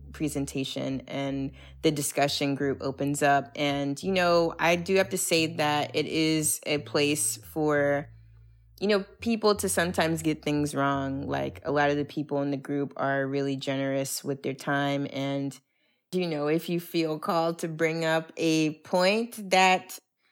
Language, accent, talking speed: English, American, 170 wpm